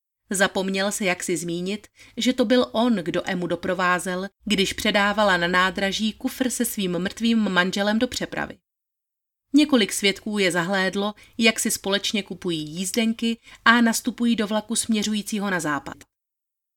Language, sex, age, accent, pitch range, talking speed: Czech, female, 30-49, native, 180-225 Hz, 140 wpm